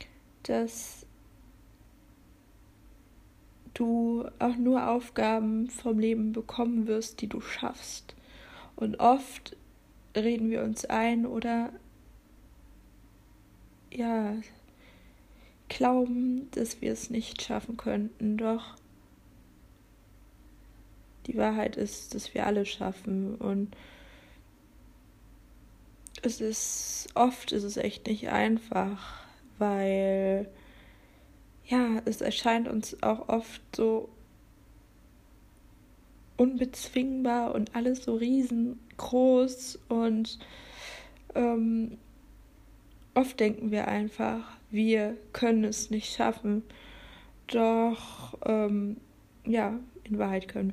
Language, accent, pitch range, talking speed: German, German, 205-235 Hz, 85 wpm